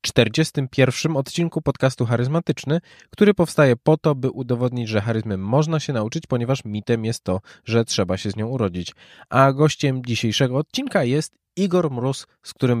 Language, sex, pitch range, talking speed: Polish, male, 115-160 Hz, 160 wpm